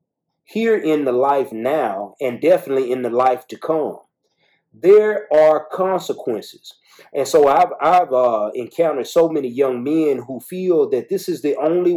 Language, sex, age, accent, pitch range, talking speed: English, male, 30-49, American, 120-180 Hz, 160 wpm